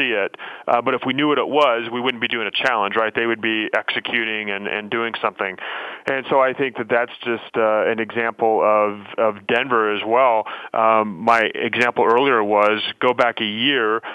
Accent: American